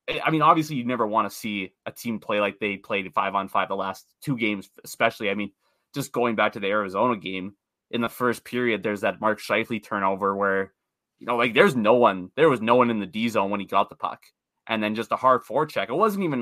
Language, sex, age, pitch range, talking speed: English, male, 20-39, 105-130 Hz, 245 wpm